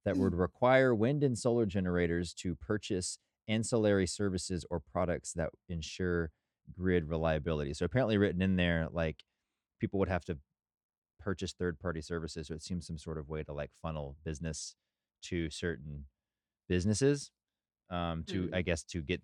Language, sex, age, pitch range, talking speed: English, male, 20-39, 80-105 Hz, 160 wpm